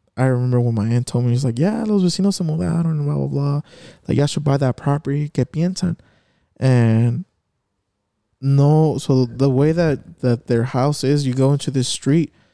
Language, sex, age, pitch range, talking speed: English, male, 20-39, 120-145 Hz, 210 wpm